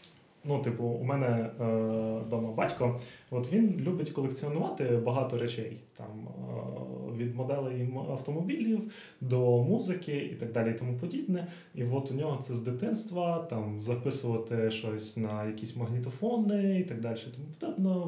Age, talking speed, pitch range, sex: 20-39, 150 wpm, 120-165 Hz, male